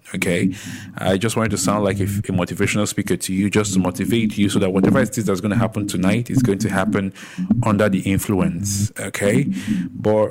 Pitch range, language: 95-115 Hz, English